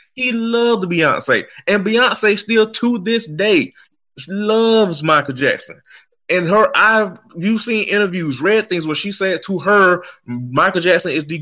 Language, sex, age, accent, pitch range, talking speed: English, male, 20-39, American, 135-200 Hz, 150 wpm